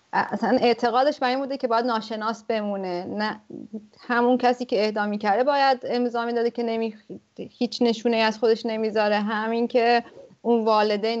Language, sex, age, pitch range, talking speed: English, female, 30-49, 215-260 Hz, 150 wpm